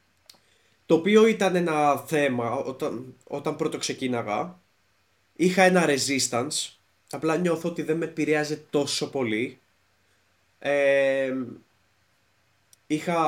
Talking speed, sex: 100 wpm, male